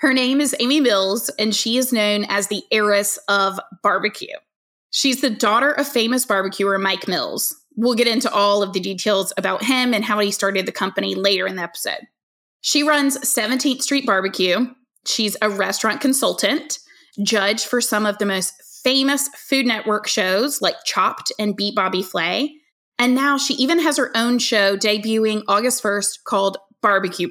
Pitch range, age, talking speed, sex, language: 195-260 Hz, 20-39, 175 wpm, female, English